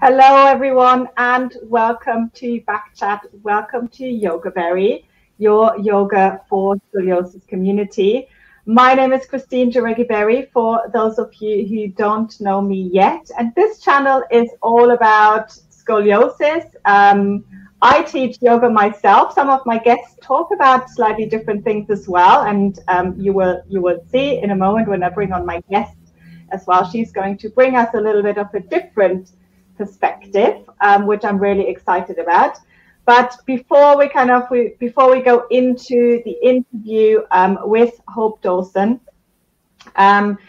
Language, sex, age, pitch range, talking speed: English, female, 30-49, 195-245 Hz, 160 wpm